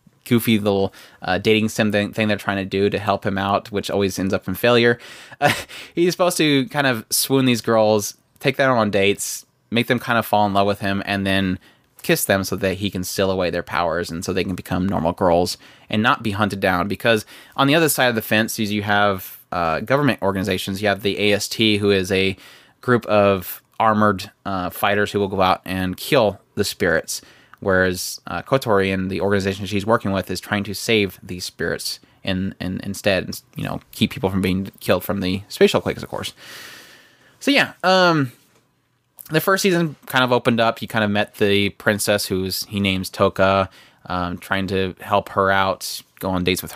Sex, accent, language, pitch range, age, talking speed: male, American, English, 95-120 Hz, 20-39, 205 wpm